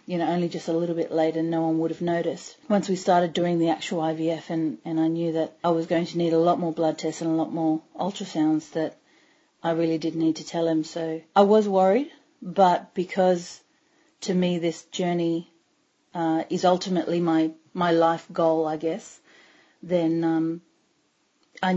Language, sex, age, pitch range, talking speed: English, female, 30-49, 160-180 Hz, 195 wpm